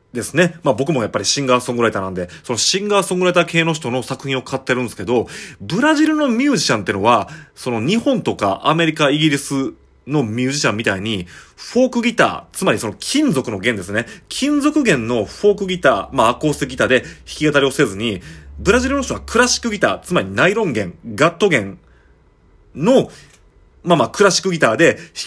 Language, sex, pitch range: Japanese, male, 125-205 Hz